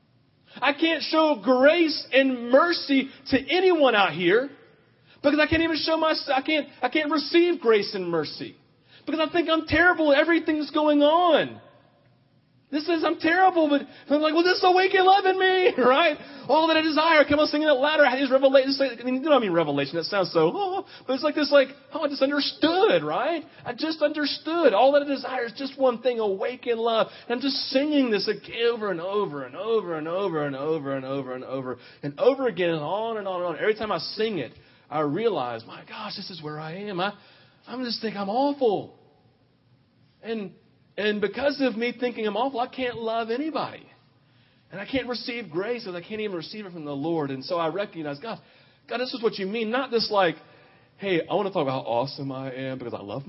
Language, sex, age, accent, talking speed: English, male, 40-59, American, 230 wpm